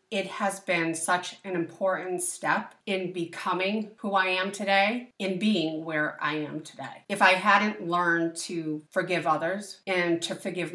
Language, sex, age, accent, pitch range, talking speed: English, female, 40-59, American, 160-195 Hz, 160 wpm